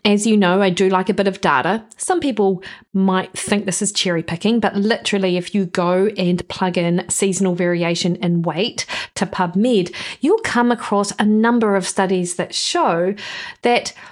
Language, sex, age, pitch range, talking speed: English, female, 40-59, 190-230 Hz, 180 wpm